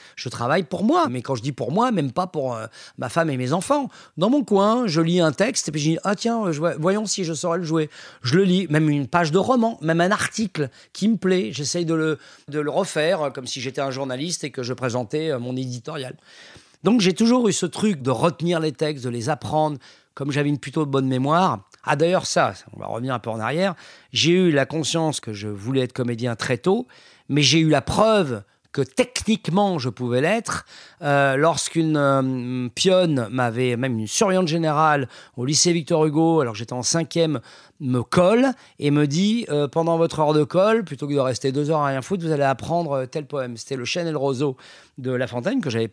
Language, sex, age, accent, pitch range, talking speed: French, male, 40-59, French, 130-180 Hz, 230 wpm